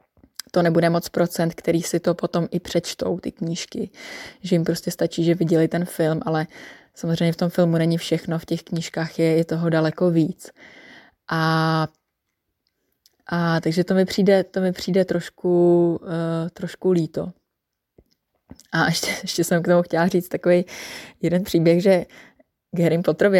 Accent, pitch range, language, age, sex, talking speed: native, 165-180 Hz, Czech, 20-39, female, 155 wpm